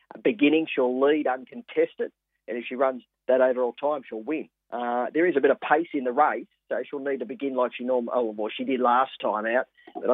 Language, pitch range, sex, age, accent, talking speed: English, 125-150 Hz, male, 40-59, Australian, 230 wpm